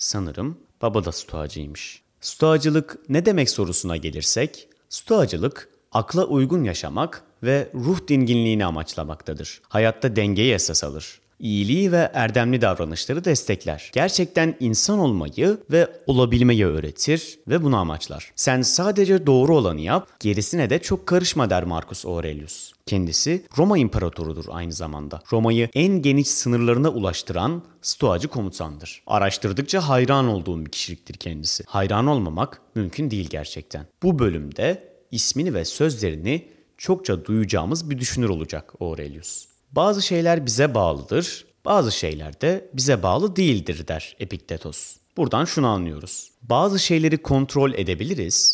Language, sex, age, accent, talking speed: Turkish, male, 30-49, native, 125 wpm